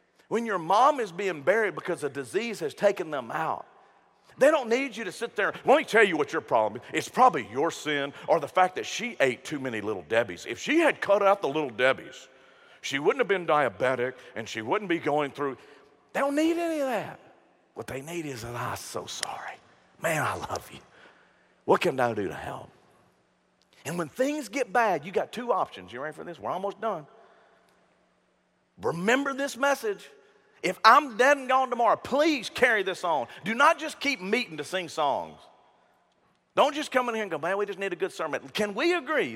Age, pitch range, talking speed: 50-69, 180-285 Hz, 210 wpm